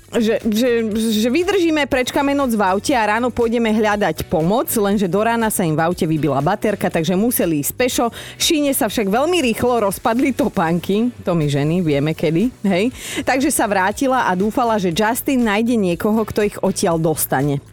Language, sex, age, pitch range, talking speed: Slovak, female, 30-49, 170-225 Hz, 175 wpm